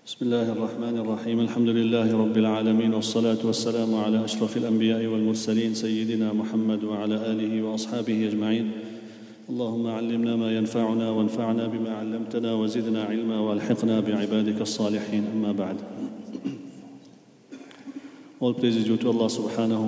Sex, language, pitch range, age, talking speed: male, English, 110-120 Hz, 40-59, 110 wpm